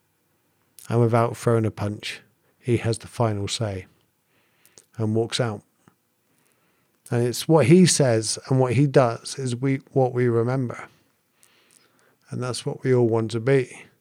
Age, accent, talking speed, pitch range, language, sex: 50-69, British, 150 wpm, 115-145 Hz, English, male